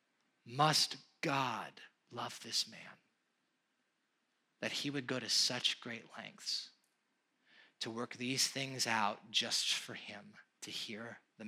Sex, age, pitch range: male, 30-49, 115-125 Hz